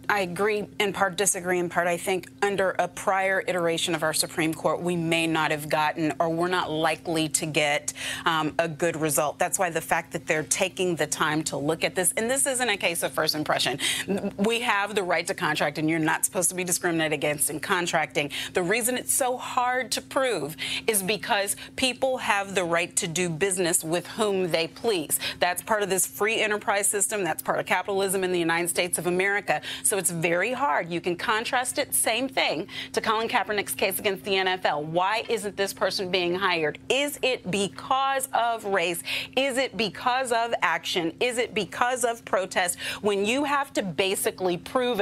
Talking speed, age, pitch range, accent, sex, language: 200 wpm, 30-49, 170-210 Hz, American, female, English